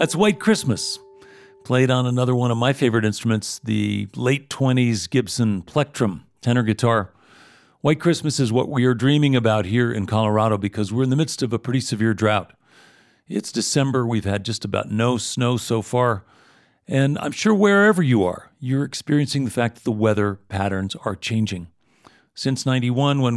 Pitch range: 110-135 Hz